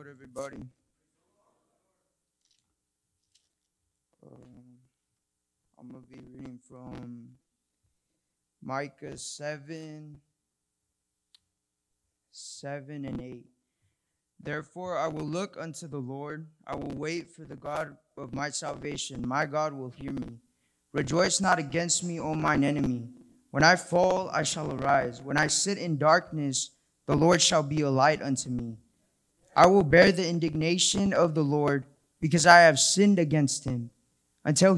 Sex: male